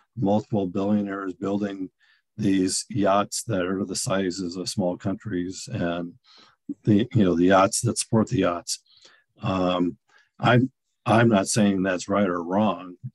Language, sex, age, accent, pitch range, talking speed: English, male, 50-69, American, 90-110 Hz, 140 wpm